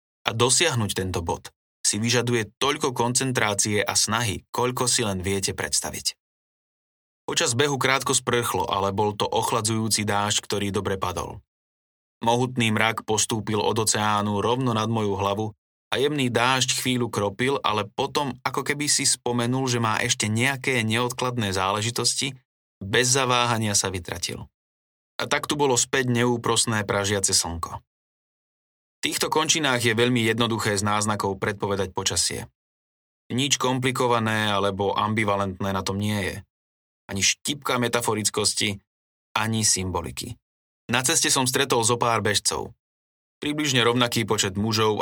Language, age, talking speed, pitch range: Slovak, 20-39, 130 wpm, 100-120 Hz